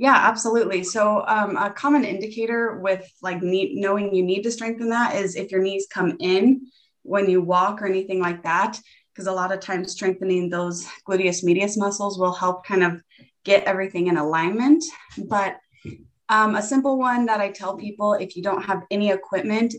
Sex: female